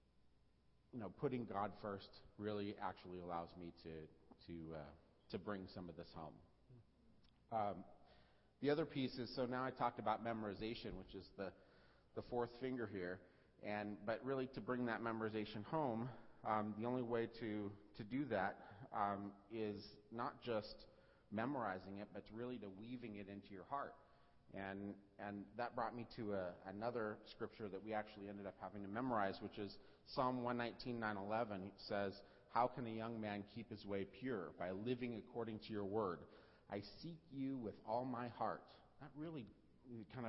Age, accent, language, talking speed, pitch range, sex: 40-59, American, English, 170 wpm, 100-120 Hz, male